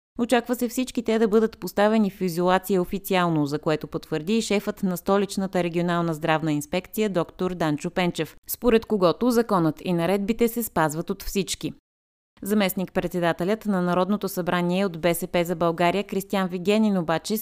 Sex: female